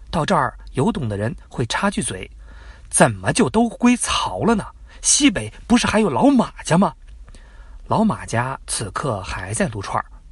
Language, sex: Chinese, male